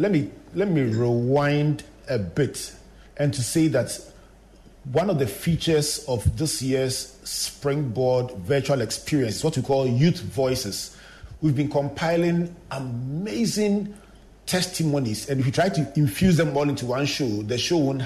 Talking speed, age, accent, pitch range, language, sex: 150 wpm, 40-59, Nigerian, 120-160 Hz, English, male